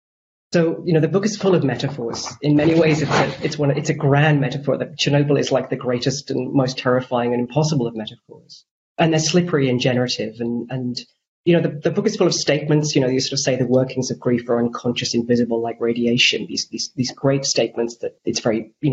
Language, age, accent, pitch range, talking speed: English, 30-49, British, 125-150 Hz, 230 wpm